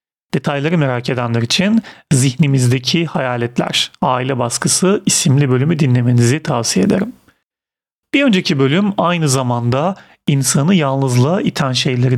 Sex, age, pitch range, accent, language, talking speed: male, 40-59, 130-180 Hz, native, Turkish, 110 wpm